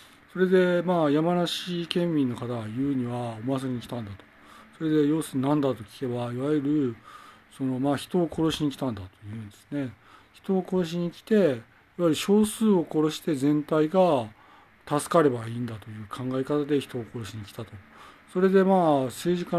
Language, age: Japanese, 40-59